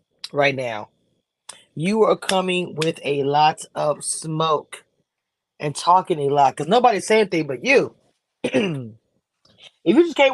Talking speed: 145 wpm